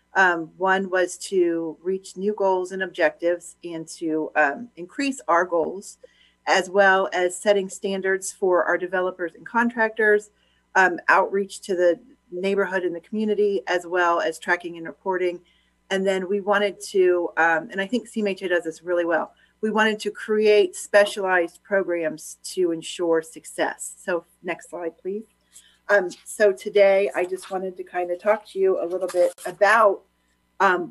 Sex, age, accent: female, 40-59, American